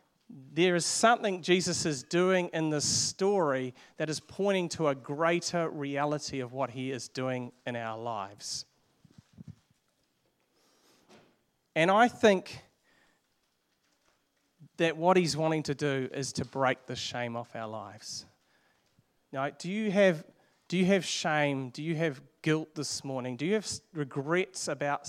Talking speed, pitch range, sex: 145 wpm, 135-170 Hz, male